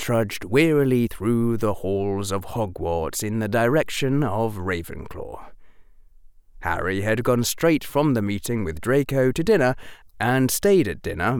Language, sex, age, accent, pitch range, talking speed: English, male, 30-49, British, 95-145 Hz, 140 wpm